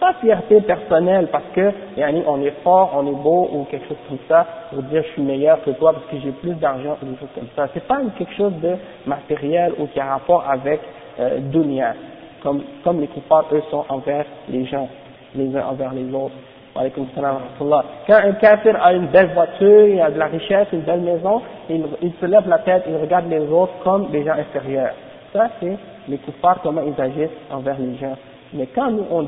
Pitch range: 140-195 Hz